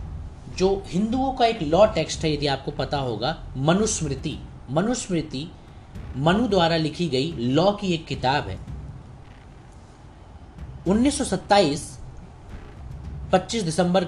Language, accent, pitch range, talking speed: Hindi, native, 135-195 Hz, 105 wpm